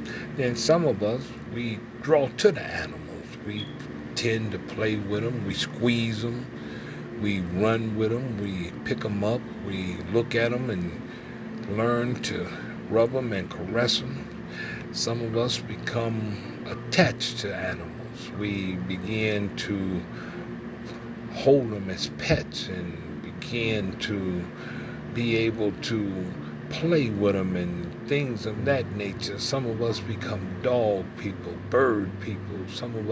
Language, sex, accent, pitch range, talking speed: English, male, American, 100-120 Hz, 140 wpm